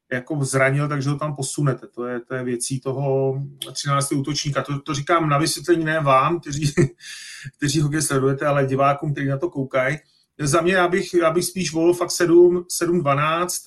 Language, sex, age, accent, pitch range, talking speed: Czech, male, 30-49, native, 135-160 Hz, 175 wpm